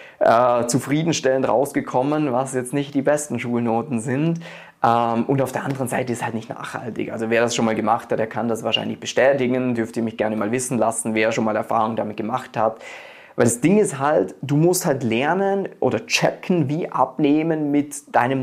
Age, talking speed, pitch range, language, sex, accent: 20-39, 200 wpm, 120-170 Hz, German, male, German